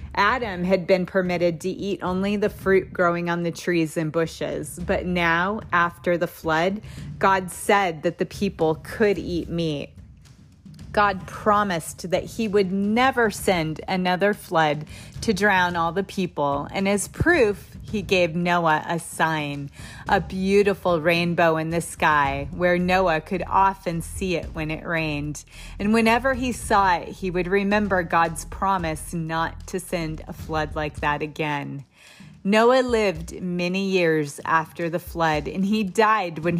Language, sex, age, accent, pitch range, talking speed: English, female, 30-49, American, 160-200 Hz, 155 wpm